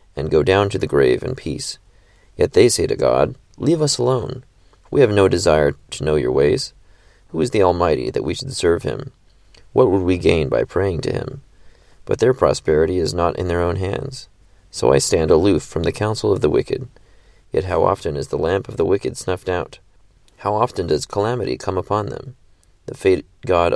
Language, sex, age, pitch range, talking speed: English, male, 30-49, 90-115 Hz, 205 wpm